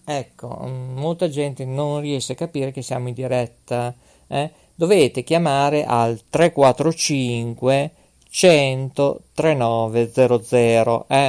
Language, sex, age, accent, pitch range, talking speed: Italian, male, 50-69, native, 120-150 Hz, 105 wpm